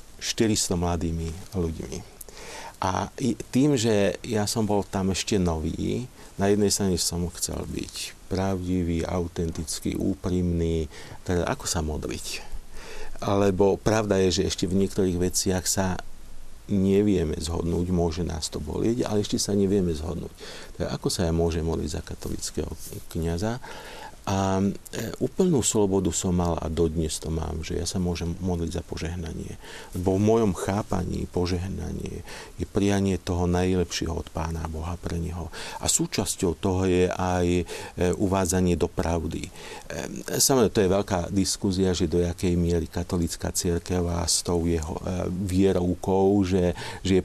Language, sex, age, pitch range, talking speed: Slovak, male, 50-69, 85-100 Hz, 140 wpm